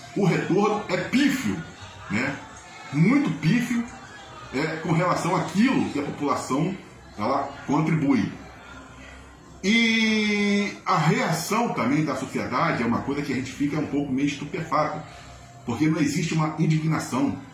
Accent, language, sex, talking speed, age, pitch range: Brazilian, Portuguese, male, 125 wpm, 40-59, 145-185 Hz